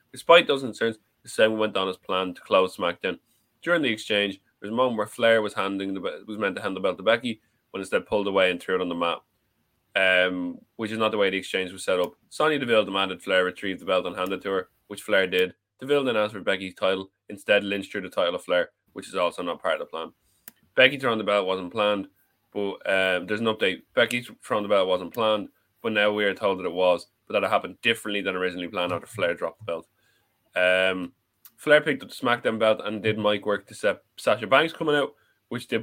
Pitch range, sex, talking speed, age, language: 95-110 Hz, male, 245 wpm, 20-39, English